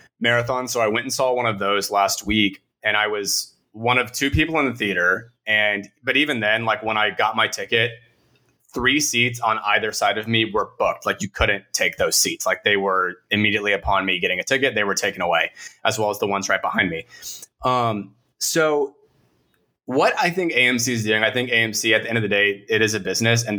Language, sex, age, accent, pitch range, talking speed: English, male, 20-39, American, 100-125 Hz, 225 wpm